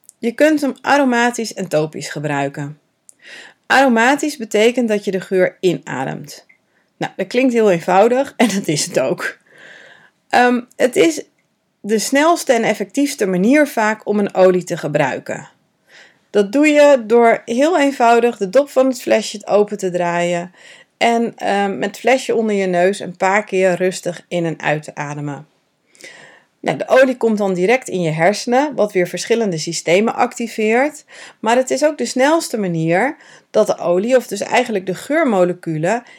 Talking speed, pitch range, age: 160 wpm, 175-240 Hz, 40-59